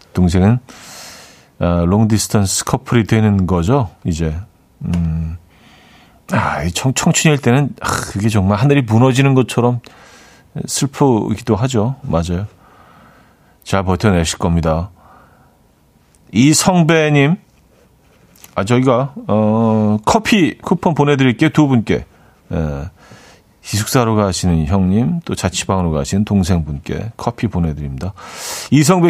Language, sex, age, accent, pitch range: Korean, male, 40-59, native, 95-145 Hz